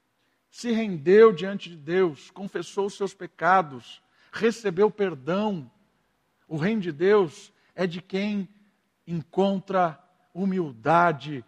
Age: 50-69